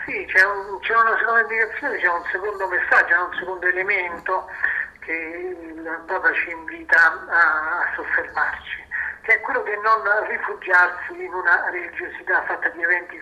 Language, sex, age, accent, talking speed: Italian, male, 50-69, native, 155 wpm